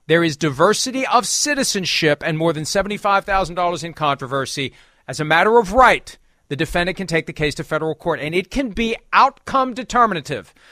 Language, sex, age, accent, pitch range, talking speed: English, male, 40-59, American, 160-210 Hz, 190 wpm